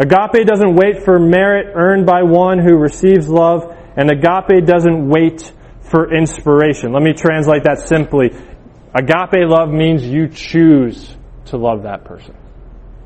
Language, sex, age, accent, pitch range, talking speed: English, male, 20-39, American, 150-185 Hz, 145 wpm